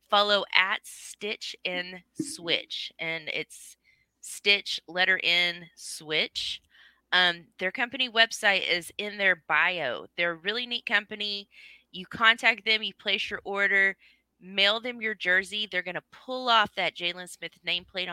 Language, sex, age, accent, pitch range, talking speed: English, female, 20-39, American, 155-205 Hz, 145 wpm